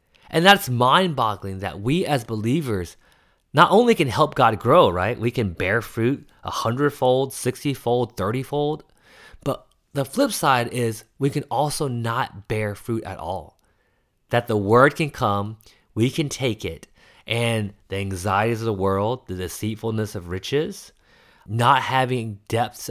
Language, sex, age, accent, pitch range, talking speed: English, male, 30-49, American, 100-130 Hz, 155 wpm